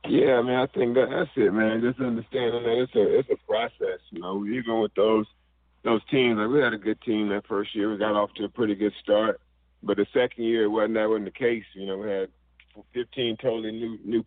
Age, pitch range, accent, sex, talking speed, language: 40-59, 90-110 Hz, American, male, 250 wpm, English